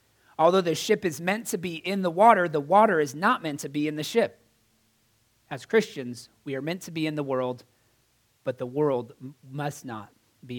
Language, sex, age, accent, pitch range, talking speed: English, male, 30-49, American, 115-135 Hz, 205 wpm